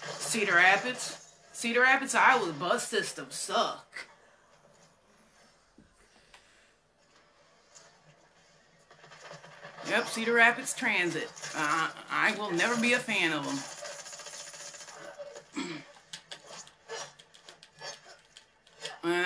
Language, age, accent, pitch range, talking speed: English, 30-49, American, 160-230 Hz, 70 wpm